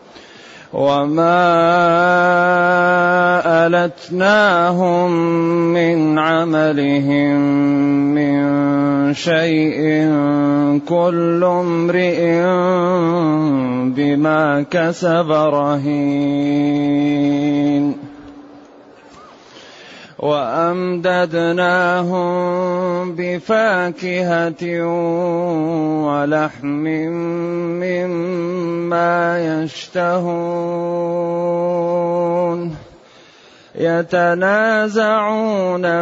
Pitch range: 155-175 Hz